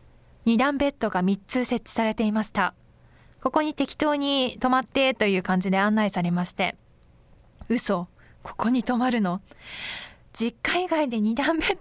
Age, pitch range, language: 20-39, 215-300 Hz, Japanese